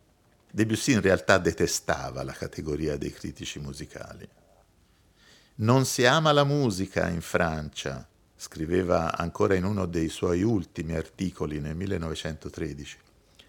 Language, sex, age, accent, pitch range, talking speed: Italian, male, 50-69, native, 80-115 Hz, 115 wpm